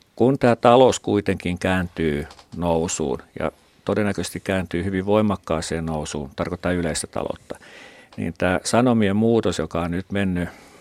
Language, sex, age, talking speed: Finnish, male, 50-69, 130 wpm